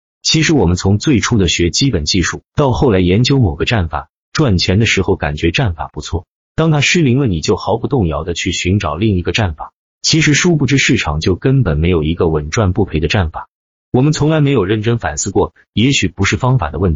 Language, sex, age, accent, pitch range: Chinese, male, 30-49, native, 85-125 Hz